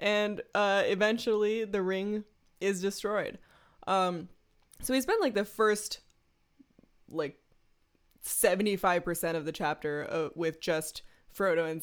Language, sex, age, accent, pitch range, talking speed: English, female, 20-39, American, 160-200 Hz, 120 wpm